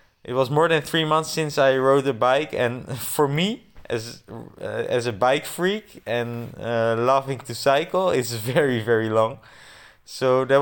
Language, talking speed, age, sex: English, 175 wpm, 20-39, male